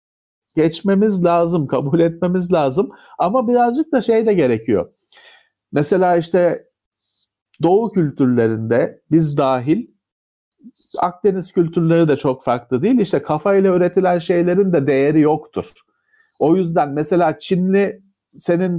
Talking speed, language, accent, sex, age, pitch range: 110 wpm, Turkish, native, male, 50-69, 140-205 Hz